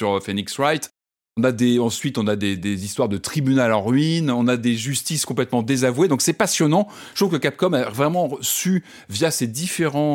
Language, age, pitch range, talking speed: French, 30-49, 110-150 Hz, 205 wpm